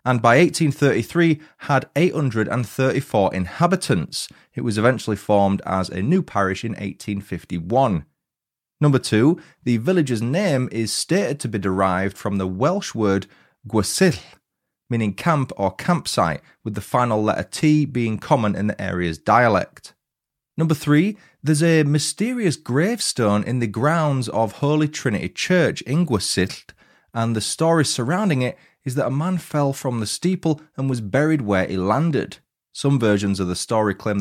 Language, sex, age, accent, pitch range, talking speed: English, male, 30-49, British, 105-150 Hz, 150 wpm